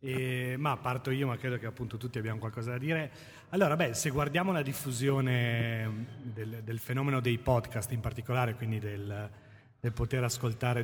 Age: 30-49